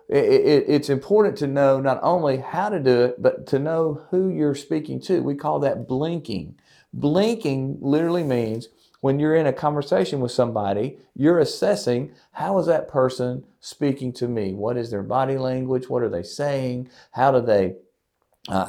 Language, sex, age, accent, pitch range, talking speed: English, male, 40-59, American, 105-145 Hz, 170 wpm